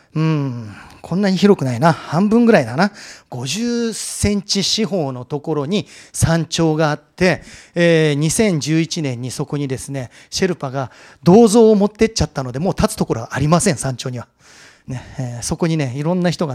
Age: 40-59